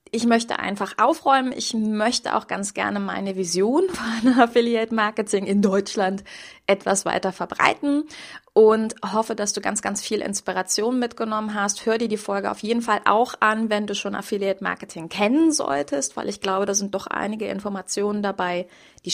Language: German